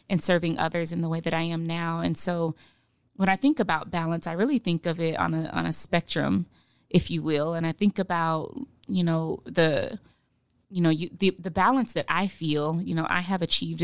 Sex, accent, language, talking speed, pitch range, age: female, American, English, 220 wpm, 165-190 Hz, 20-39